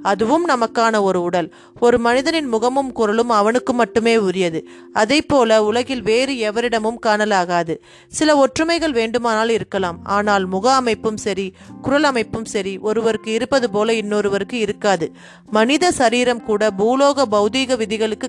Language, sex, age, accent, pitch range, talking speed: Tamil, female, 30-49, native, 205-250 Hz, 125 wpm